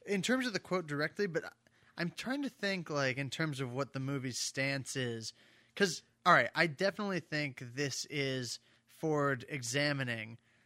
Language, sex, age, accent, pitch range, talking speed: English, male, 20-39, American, 125-155 Hz, 170 wpm